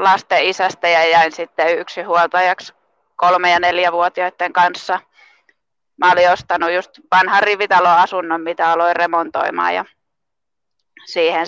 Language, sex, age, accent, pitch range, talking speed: Finnish, female, 20-39, native, 175-190 Hz, 110 wpm